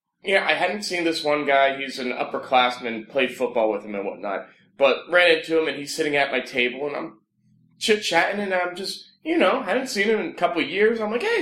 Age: 20-39